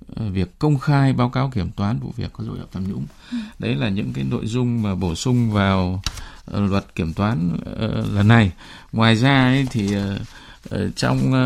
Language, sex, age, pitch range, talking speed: Vietnamese, male, 20-39, 95-125 Hz, 180 wpm